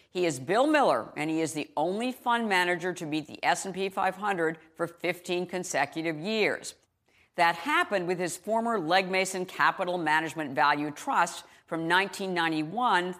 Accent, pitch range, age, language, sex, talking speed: American, 155-190 Hz, 50-69, English, female, 150 wpm